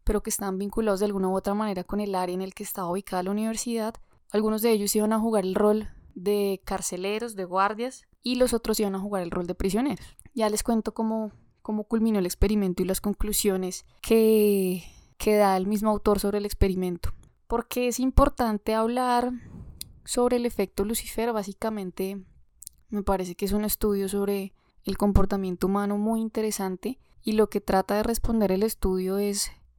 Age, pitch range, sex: 10-29, 190-220 Hz, female